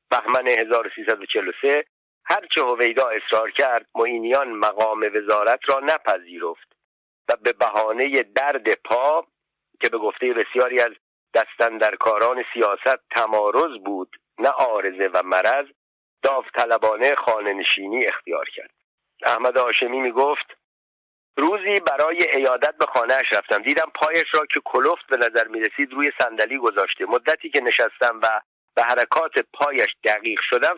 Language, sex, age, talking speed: Persian, male, 50-69, 125 wpm